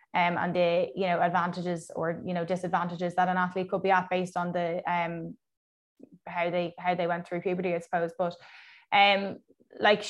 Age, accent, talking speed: 20-39, Irish, 190 wpm